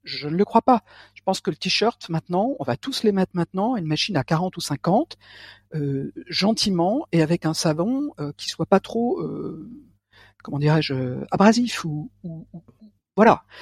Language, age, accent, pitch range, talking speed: French, 60-79, French, 160-225 Hz, 185 wpm